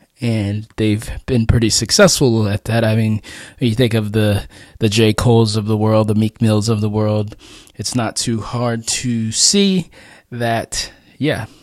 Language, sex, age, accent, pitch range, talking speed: English, male, 20-39, American, 110-140 Hz, 170 wpm